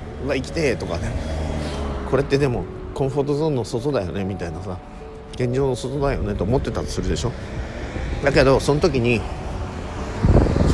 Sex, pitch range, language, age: male, 80-120 Hz, Japanese, 50-69